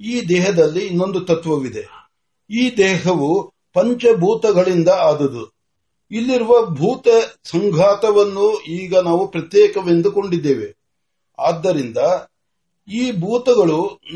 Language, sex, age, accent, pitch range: Marathi, male, 60-79, native, 180-245 Hz